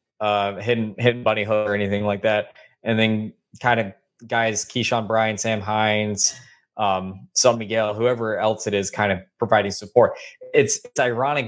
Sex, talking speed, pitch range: male, 160 wpm, 105-120 Hz